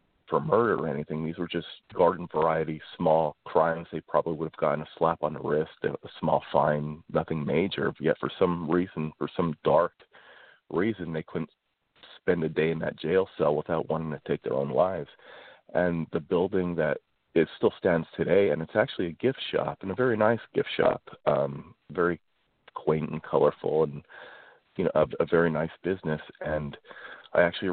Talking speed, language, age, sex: 185 wpm, English, 40-59, male